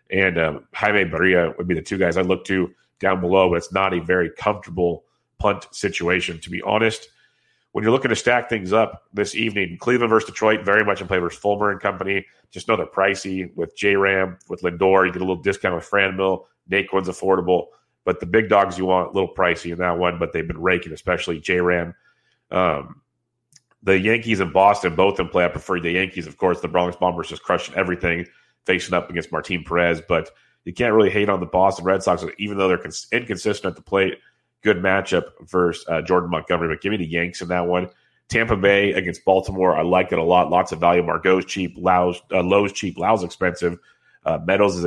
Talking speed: 215 wpm